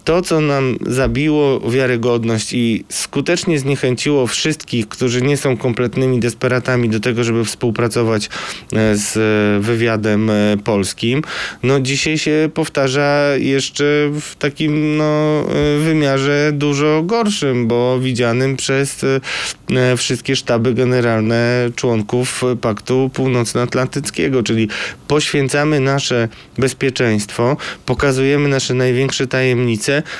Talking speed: 95 wpm